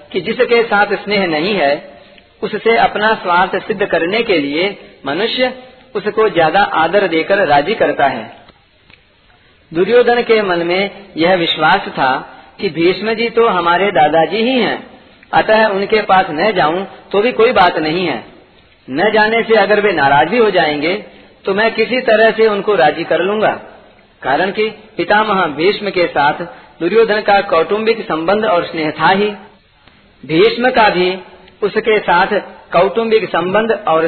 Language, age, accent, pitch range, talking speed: Hindi, 40-59, native, 175-225 Hz, 155 wpm